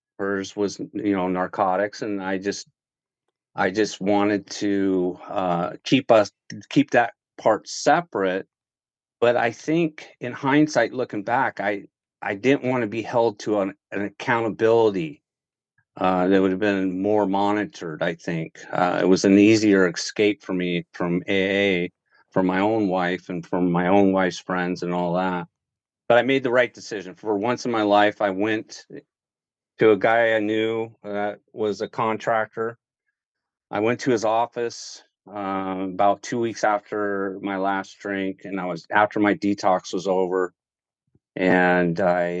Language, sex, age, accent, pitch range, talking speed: English, male, 50-69, American, 95-110 Hz, 160 wpm